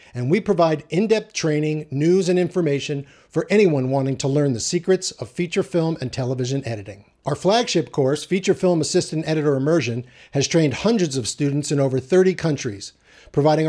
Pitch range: 130-170 Hz